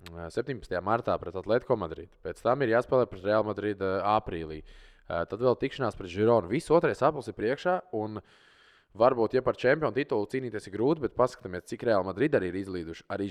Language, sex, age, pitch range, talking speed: English, male, 20-39, 85-115 Hz, 200 wpm